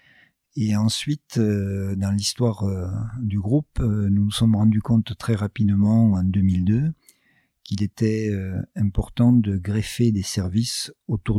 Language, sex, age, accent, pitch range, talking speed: French, male, 50-69, French, 95-115 Hz, 120 wpm